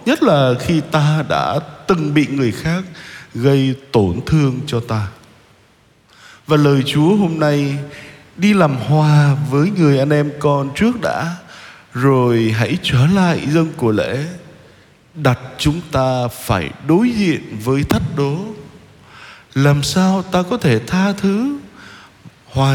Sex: male